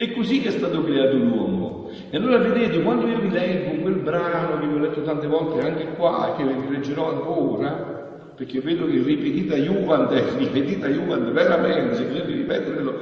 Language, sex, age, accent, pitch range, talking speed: Italian, male, 60-79, native, 135-200 Hz, 185 wpm